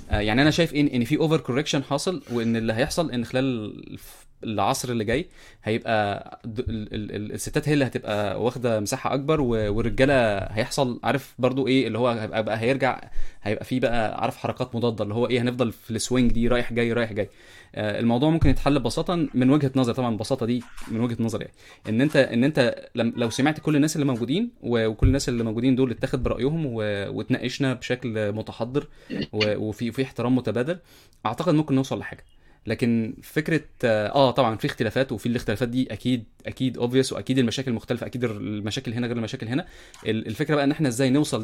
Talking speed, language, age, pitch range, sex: 180 wpm, Arabic, 20-39, 110-135 Hz, male